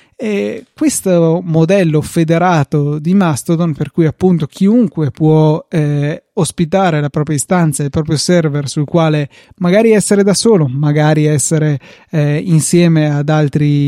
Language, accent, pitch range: Italian, native, 155-190 Hz